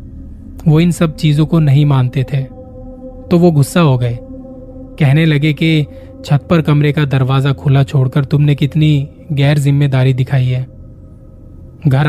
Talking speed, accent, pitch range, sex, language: 150 wpm, native, 125-150 Hz, male, Hindi